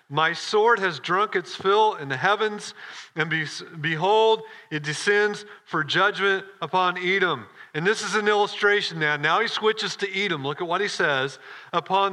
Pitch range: 155-200 Hz